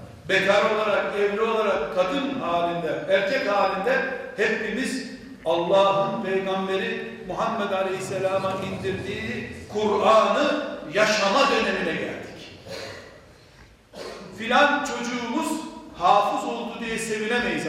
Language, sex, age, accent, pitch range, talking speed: Turkish, male, 60-79, native, 165-220 Hz, 80 wpm